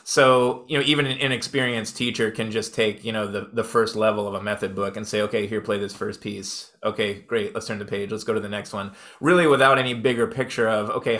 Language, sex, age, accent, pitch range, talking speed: English, male, 20-39, American, 110-130 Hz, 250 wpm